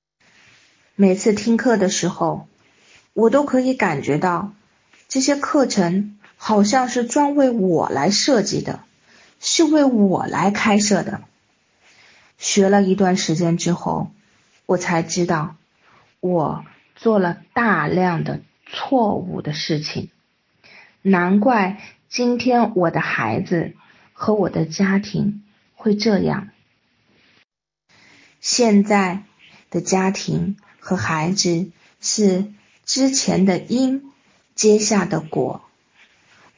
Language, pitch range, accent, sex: Chinese, 180-225 Hz, native, female